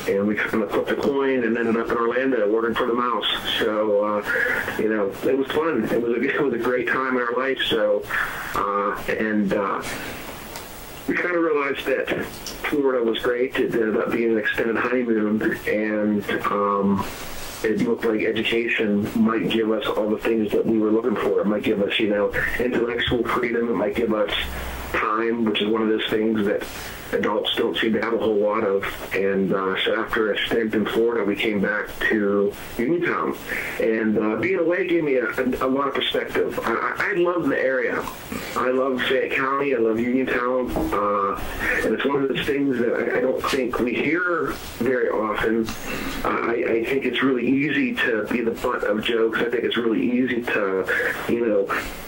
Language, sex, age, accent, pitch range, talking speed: English, male, 40-59, American, 105-130 Hz, 200 wpm